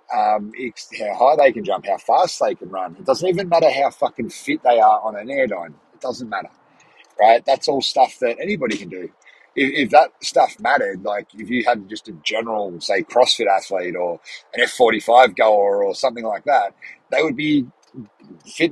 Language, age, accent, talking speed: English, 40-59, Australian, 195 wpm